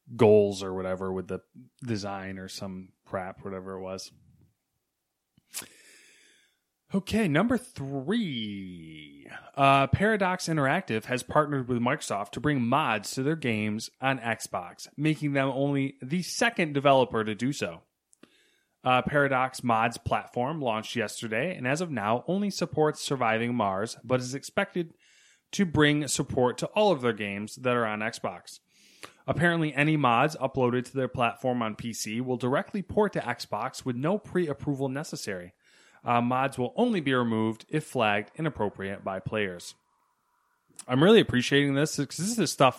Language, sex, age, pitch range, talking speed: English, male, 20-39, 110-155 Hz, 150 wpm